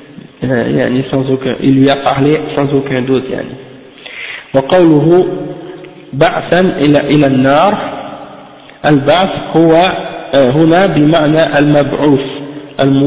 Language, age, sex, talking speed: French, 50-69, male, 85 wpm